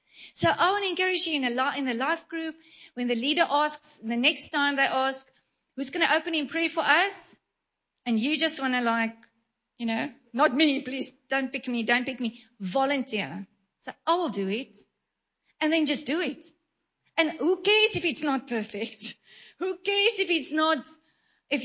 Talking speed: 190 wpm